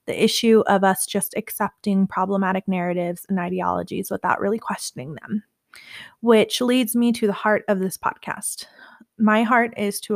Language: English